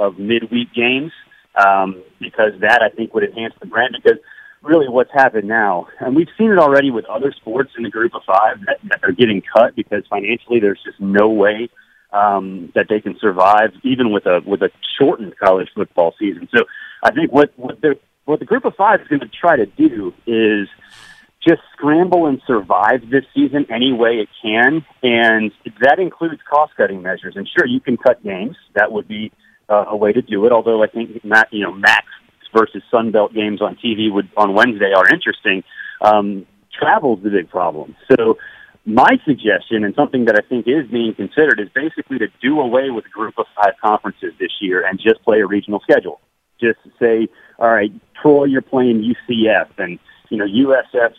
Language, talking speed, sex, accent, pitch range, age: English, 195 wpm, male, American, 105-140 Hz, 40-59